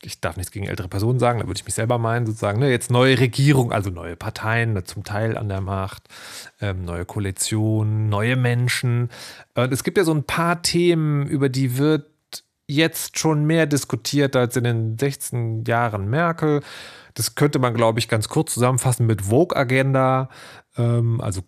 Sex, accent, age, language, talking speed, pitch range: male, German, 30-49, German, 170 wpm, 115-135 Hz